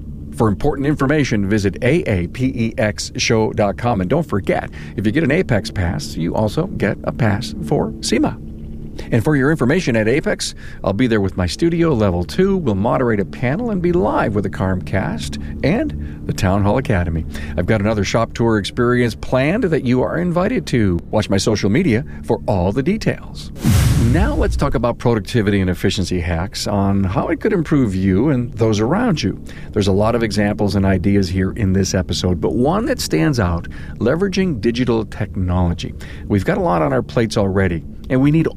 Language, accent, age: English, American, 50-69